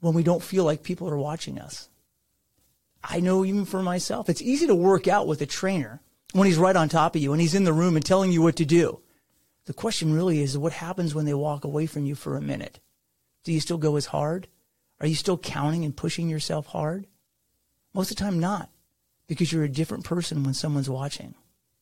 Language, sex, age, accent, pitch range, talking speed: English, male, 30-49, American, 160-215 Hz, 225 wpm